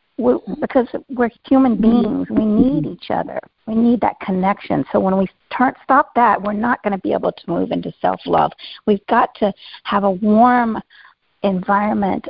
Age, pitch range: 50-69, 205-255 Hz